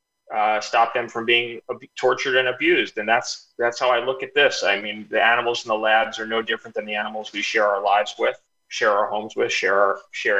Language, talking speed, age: English, 240 wpm, 30-49